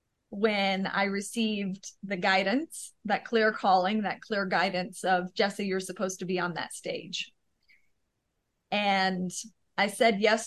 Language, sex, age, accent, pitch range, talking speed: English, female, 30-49, American, 185-210 Hz, 140 wpm